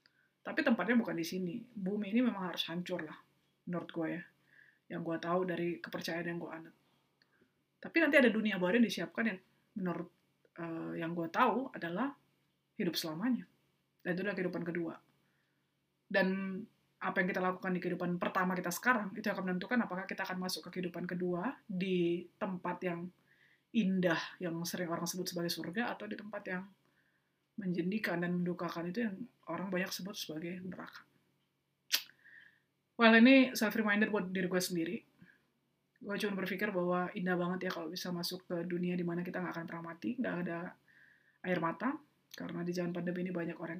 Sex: female